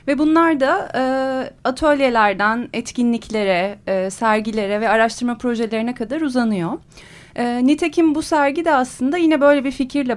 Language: Turkish